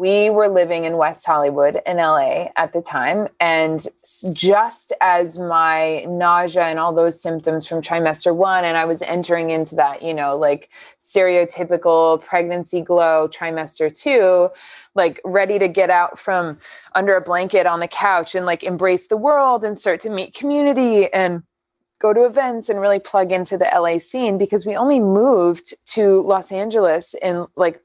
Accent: American